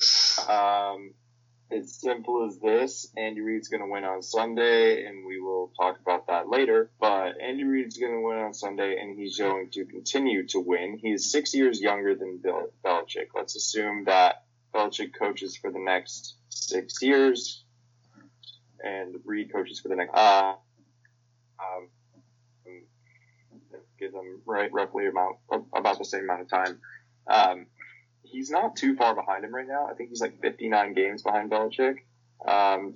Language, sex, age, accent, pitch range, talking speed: English, male, 20-39, American, 100-120 Hz, 155 wpm